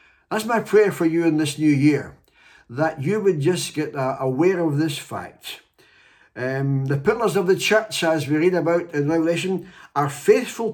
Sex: male